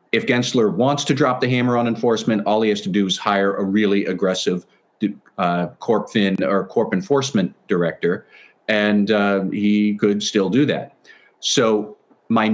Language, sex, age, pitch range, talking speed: English, male, 40-59, 100-125 Hz, 170 wpm